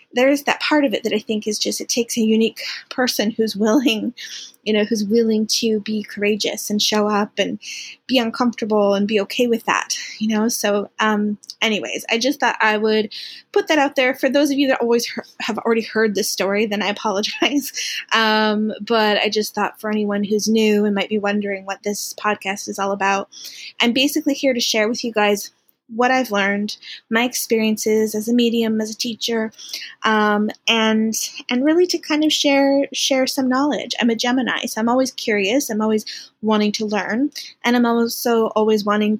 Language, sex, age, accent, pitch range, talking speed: English, female, 20-39, American, 210-245 Hz, 195 wpm